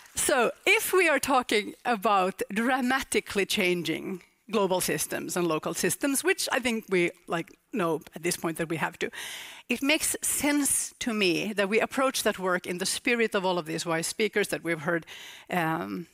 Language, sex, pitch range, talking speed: English, female, 175-240 Hz, 180 wpm